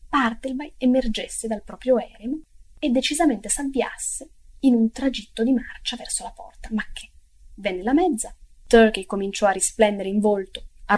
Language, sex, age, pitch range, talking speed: Italian, female, 20-39, 195-255 Hz, 155 wpm